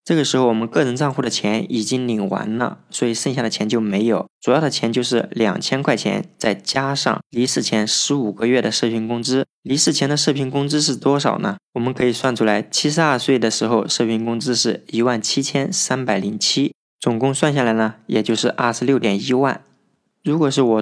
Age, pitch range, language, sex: 20-39, 115-140 Hz, Chinese, male